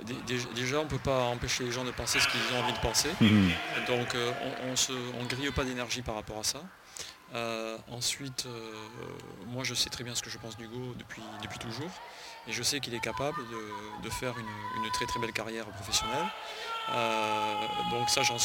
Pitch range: 115-125 Hz